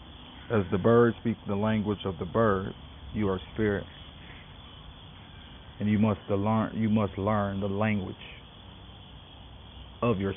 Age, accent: 40-59, American